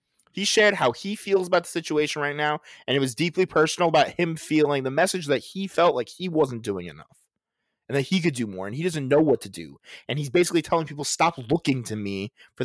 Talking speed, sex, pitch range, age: 240 wpm, male, 120-180 Hz, 20-39